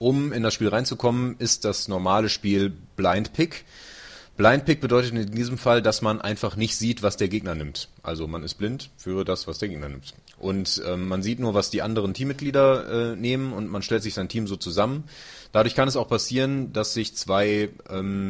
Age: 30-49